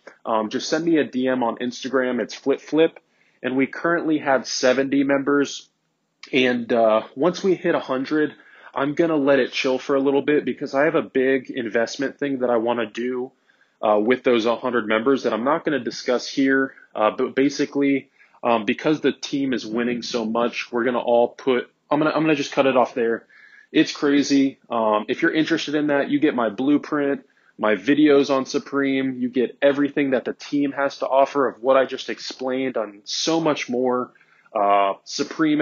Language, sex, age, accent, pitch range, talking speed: English, male, 20-39, American, 125-140 Hz, 195 wpm